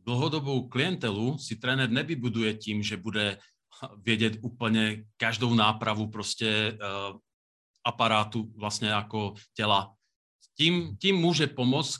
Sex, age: male, 40-59